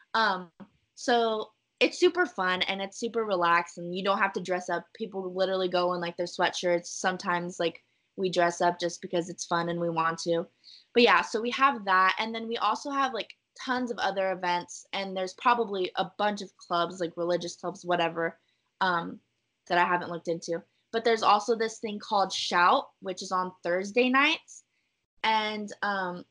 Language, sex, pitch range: English, female, 175-215 Hz